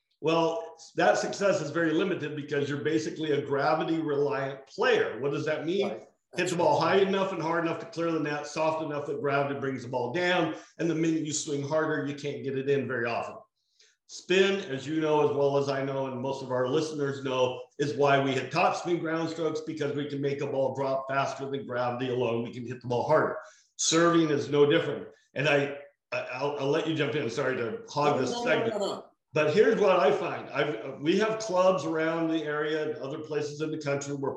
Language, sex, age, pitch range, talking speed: English, male, 50-69, 145-180 Hz, 220 wpm